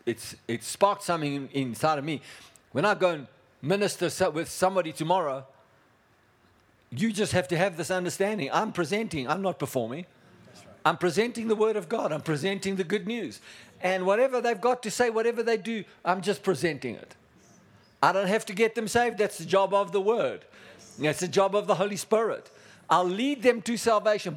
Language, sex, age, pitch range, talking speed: English, male, 60-79, 130-195 Hz, 185 wpm